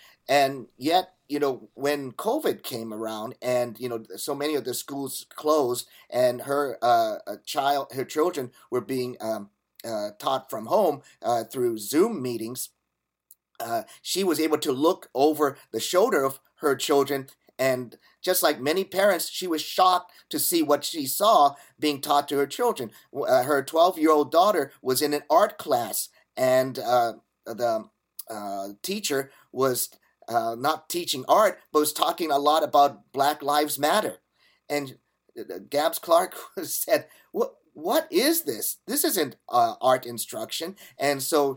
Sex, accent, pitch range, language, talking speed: male, American, 125-155 Hz, English, 155 wpm